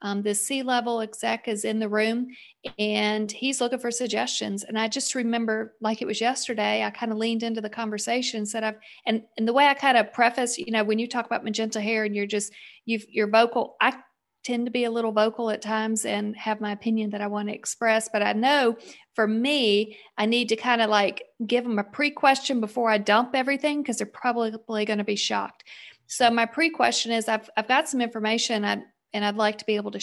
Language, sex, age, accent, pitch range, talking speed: English, female, 40-59, American, 215-240 Hz, 235 wpm